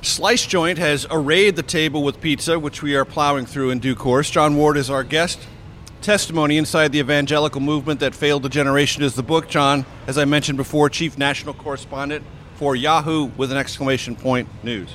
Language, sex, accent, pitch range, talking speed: English, male, American, 120-150 Hz, 195 wpm